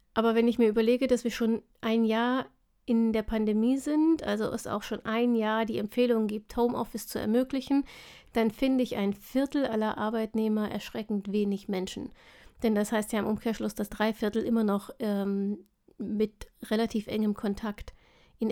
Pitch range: 205-235 Hz